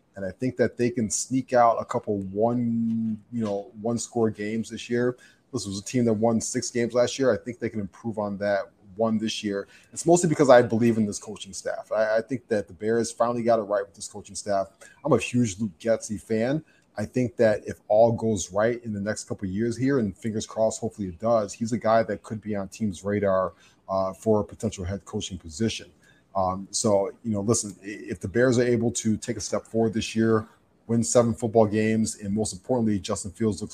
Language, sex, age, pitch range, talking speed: English, male, 30-49, 100-120 Hz, 230 wpm